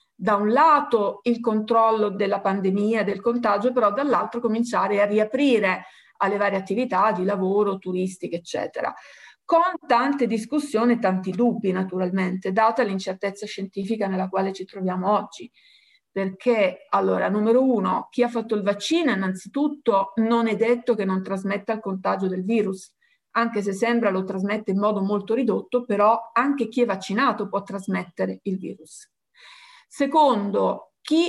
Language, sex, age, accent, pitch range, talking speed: Italian, female, 50-69, native, 195-235 Hz, 145 wpm